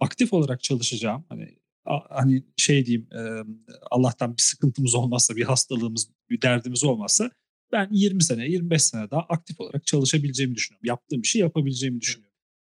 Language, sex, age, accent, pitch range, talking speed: Turkish, male, 40-59, native, 120-155 Hz, 140 wpm